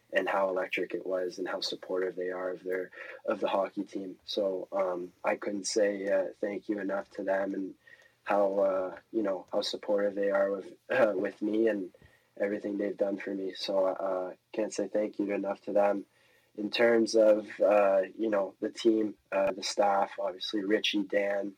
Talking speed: 195 wpm